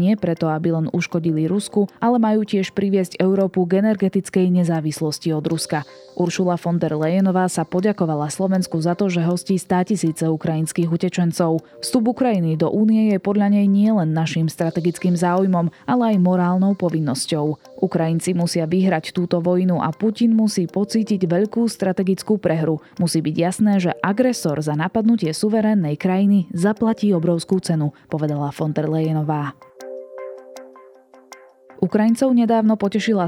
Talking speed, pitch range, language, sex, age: 140 wpm, 165-200 Hz, Slovak, female, 20-39